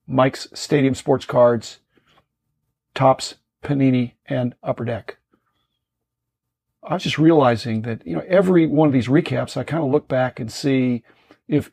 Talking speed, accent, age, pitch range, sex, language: 150 wpm, American, 50-69, 125-150 Hz, male, English